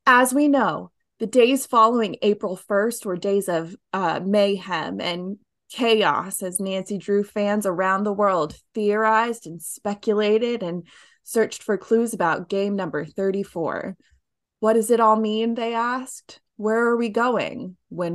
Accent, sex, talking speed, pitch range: American, female, 150 wpm, 175-230 Hz